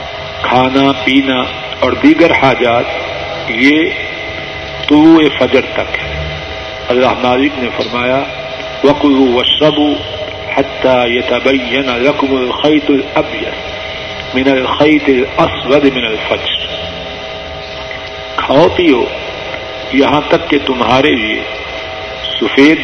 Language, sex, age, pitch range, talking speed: Urdu, male, 50-69, 115-135 Hz, 80 wpm